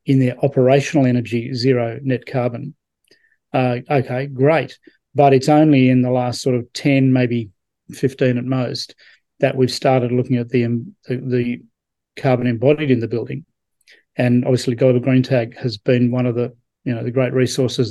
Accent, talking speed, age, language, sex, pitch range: Australian, 170 wpm, 40-59, English, male, 125-140 Hz